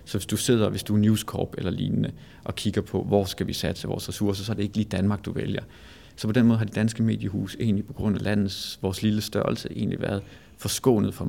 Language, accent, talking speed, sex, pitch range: Danish, native, 255 wpm, male, 100-120 Hz